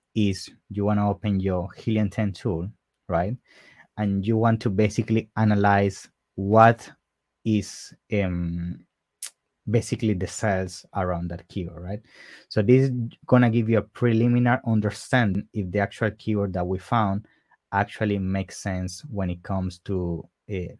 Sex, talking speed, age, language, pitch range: male, 140 wpm, 30-49, English, 95-115 Hz